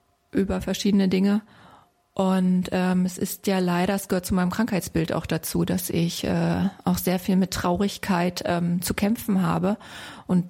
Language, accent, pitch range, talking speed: German, German, 180-210 Hz, 165 wpm